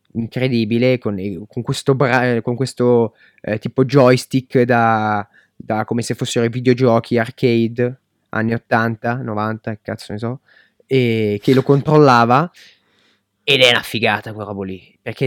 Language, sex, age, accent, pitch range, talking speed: Italian, male, 20-39, native, 110-130 Hz, 145 wpm